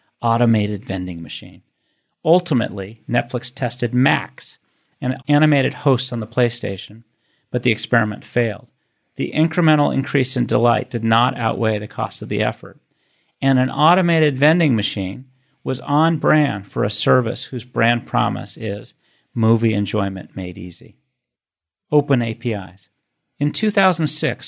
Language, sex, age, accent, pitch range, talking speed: English, male, 40-59, American, 110-135 Hz, 125 wpm